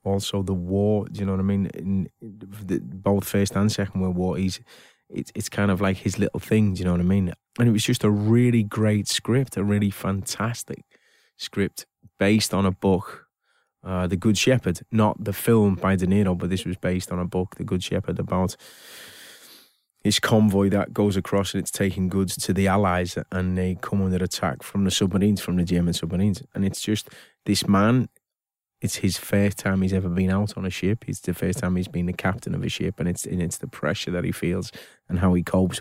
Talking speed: 220 wpm